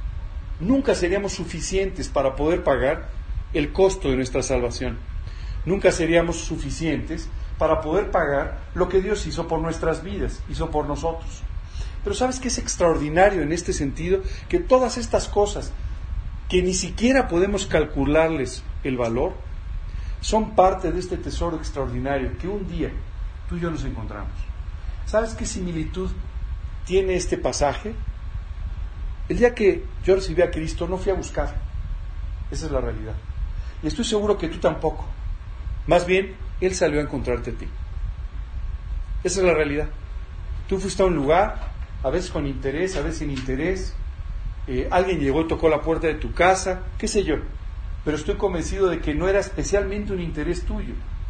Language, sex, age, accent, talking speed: Spanish, male, 40-59, Mexican, 160 wpm